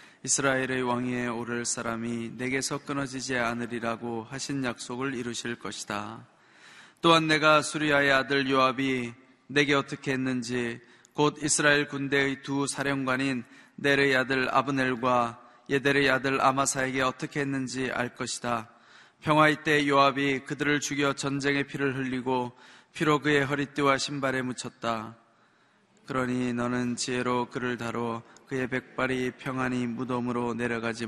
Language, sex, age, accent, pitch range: Korean, male, 20-39, native, 120-140 Hz